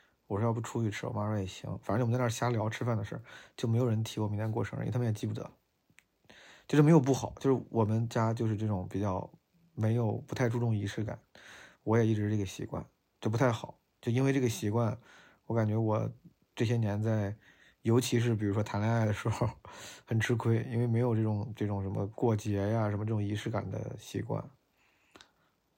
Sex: male